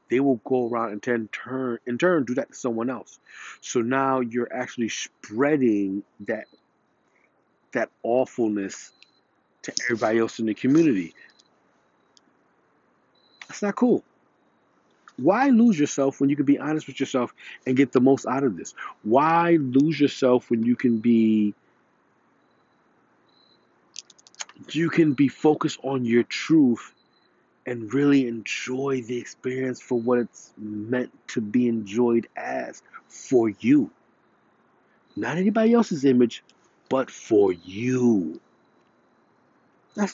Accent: American